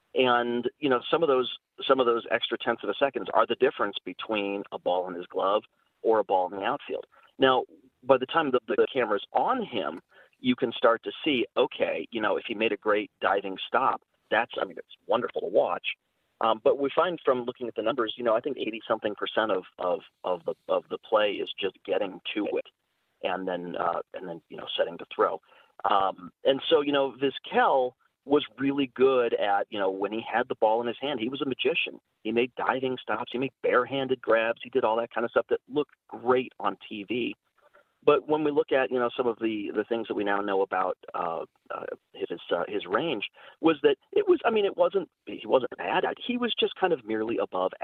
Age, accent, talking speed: 40-59, American, 230 wpm